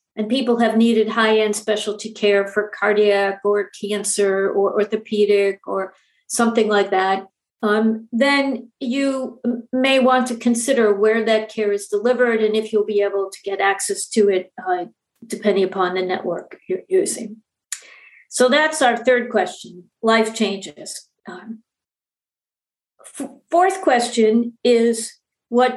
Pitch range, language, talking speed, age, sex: 205-250 Hz, English, 135 wpm, 50-69, female